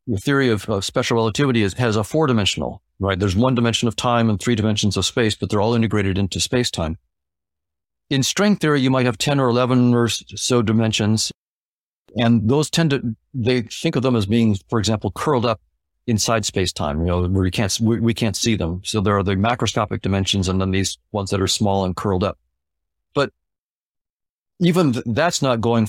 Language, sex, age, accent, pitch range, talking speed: English, male, 50-69, American, 95-125 Hz, 210 wpm